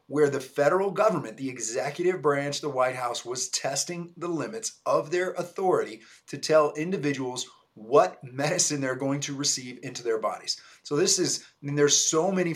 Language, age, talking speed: English, 30-49, 175 wpm